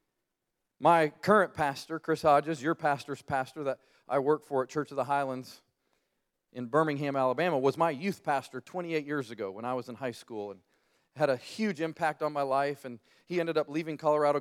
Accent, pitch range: American, 135-165 Hz